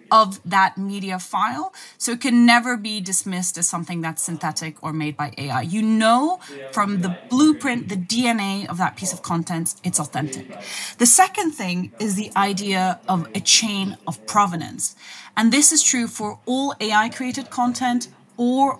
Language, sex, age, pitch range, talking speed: English, female, 30-49, 180-250 Hz, 165 wpm